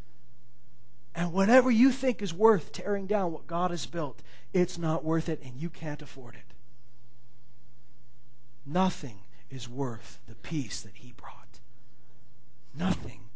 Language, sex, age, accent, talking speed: English, male, 40-59, American, 135 wpm